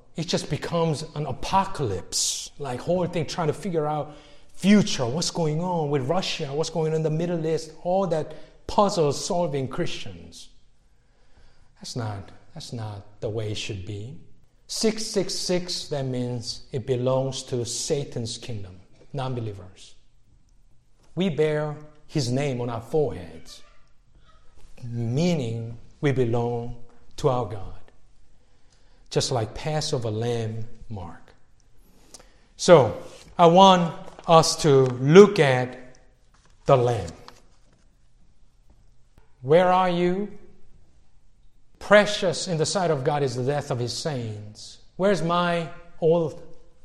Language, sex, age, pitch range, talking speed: English, male, 50-69, 120-170 Hz, 120 wpm